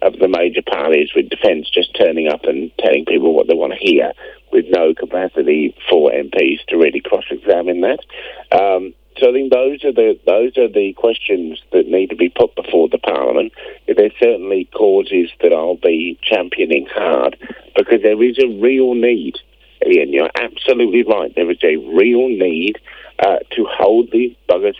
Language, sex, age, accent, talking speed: English, male, 50-69, British, 180 wpm